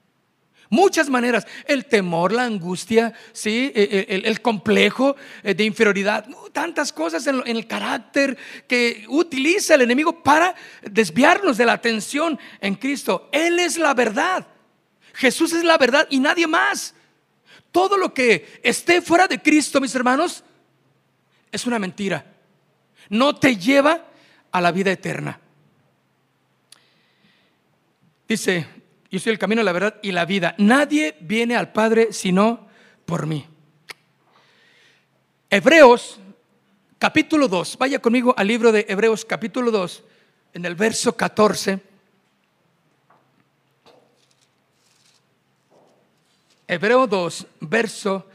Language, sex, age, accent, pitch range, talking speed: Spanish, male, 50-69, Mexican, 205-285 Hz, 115 wpm